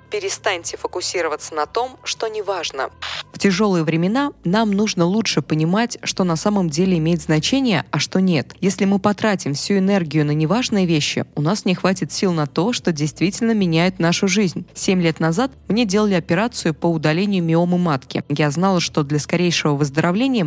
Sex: female